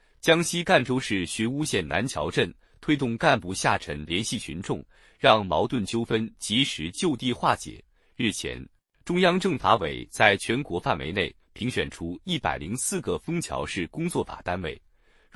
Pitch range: 95-160 Hz